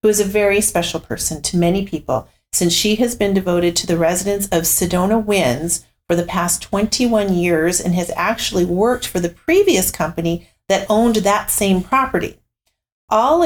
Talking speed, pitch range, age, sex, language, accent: 175 wpm, 170-205 Hz, 40-59, female, English, American